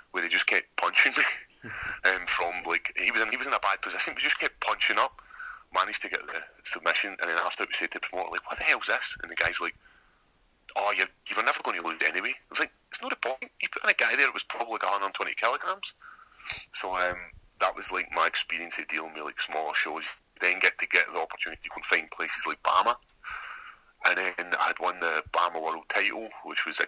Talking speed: 250 wpm